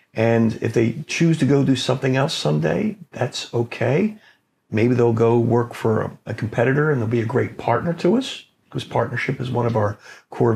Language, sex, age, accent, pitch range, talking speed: English, male, 50-69, American, 110-130 Hz, 195 wpm